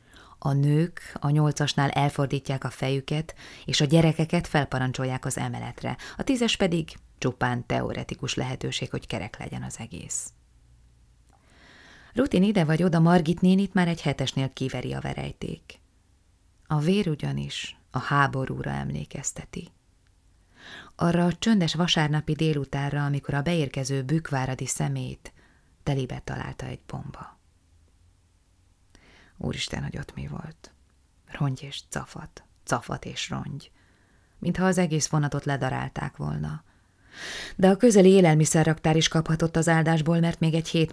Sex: female